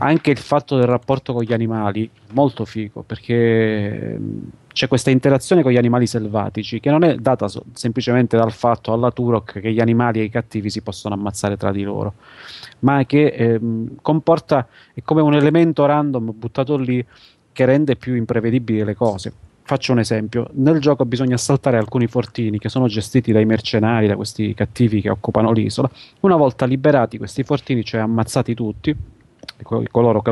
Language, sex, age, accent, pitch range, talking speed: Italian, male, 30-49, native, 110-135 Hz, 170 wpm